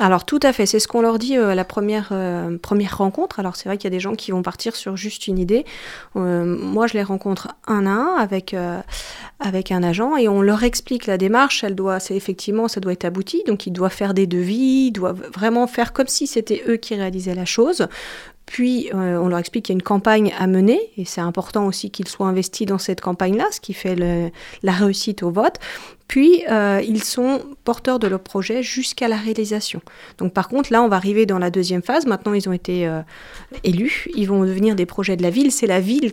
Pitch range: 185-230 Hz